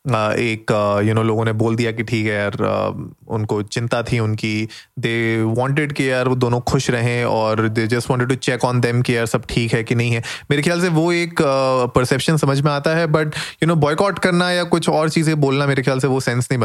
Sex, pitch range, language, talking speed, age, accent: male, 110-135 Hz, Hindi, 255 wpm, 30-49, native